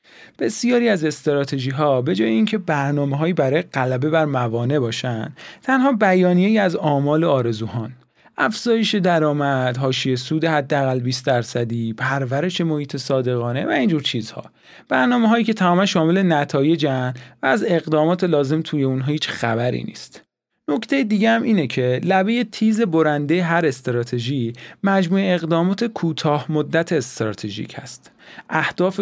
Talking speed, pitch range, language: 130 wpm, 135-185 Hz, Persian